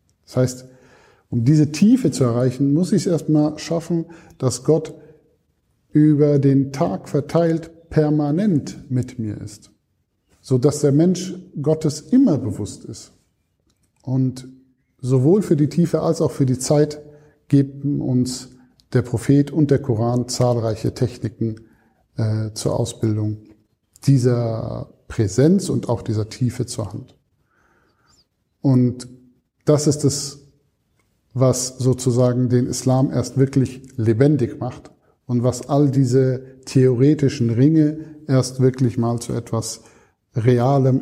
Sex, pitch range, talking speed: male, 115-145 Hz, 120 wpm